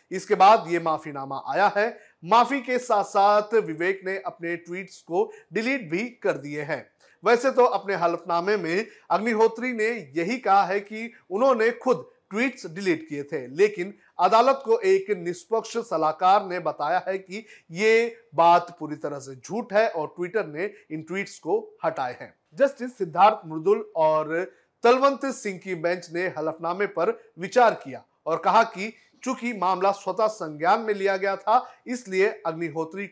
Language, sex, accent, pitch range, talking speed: Hindi, male, native, 170-225 Hz, 160 wpm